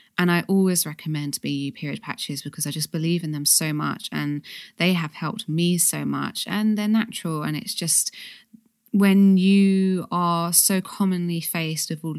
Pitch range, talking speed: 160-215 Hz, 175 wpm